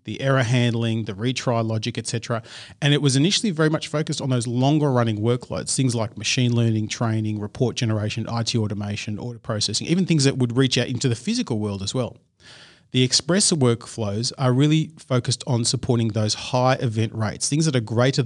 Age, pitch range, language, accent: 40-59, 115-145 Hz, English, Australian